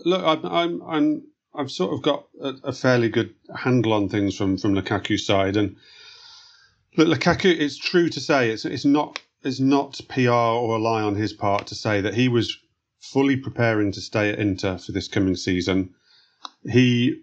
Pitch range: 105-135 Hz